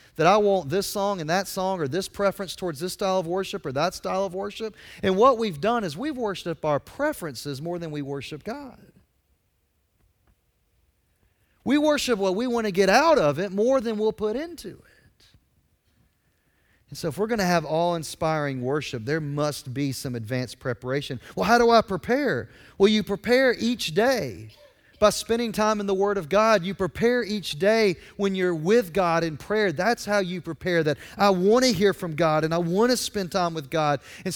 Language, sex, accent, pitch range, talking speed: English, male, American, 135-205 Hz, 200 wpm